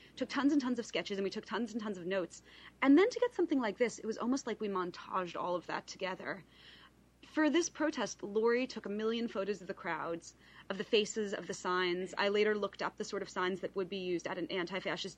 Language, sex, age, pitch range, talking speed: English, female, 30-49, 170-220 Hz, 250 wpm